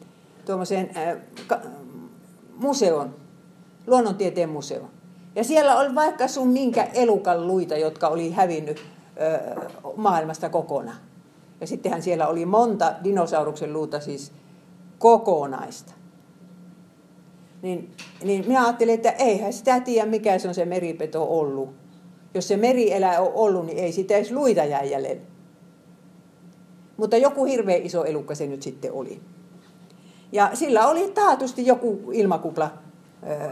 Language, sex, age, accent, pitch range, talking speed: Finnish, female, 50-69, native, 165-215 Hz, 120 wpm